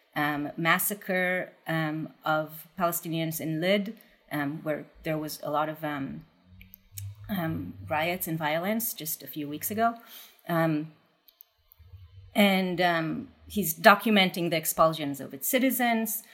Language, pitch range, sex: English, 165-225 Hz, female